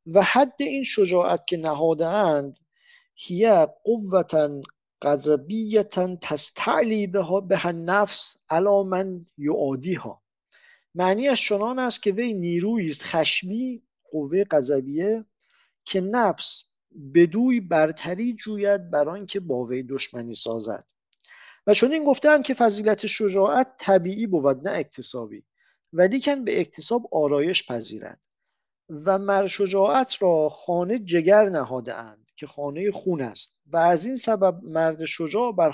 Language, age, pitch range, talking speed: English, 50-69, 150-220 Hz, 130 wpm